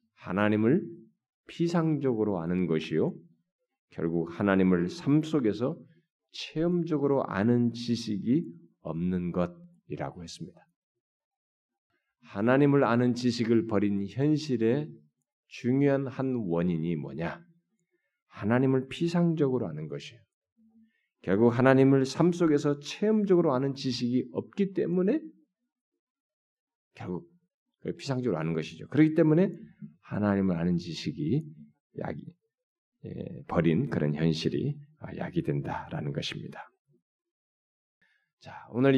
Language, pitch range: Korean, 100-165 Hz